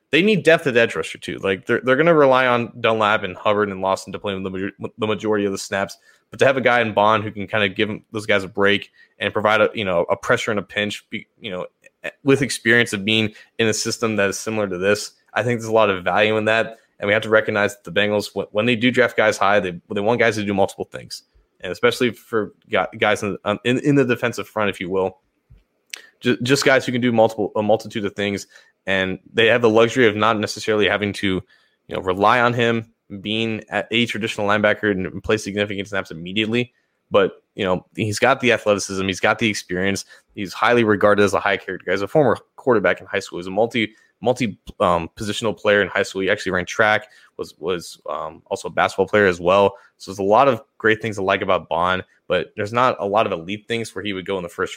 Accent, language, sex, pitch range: American, English, male, 100-115 Hz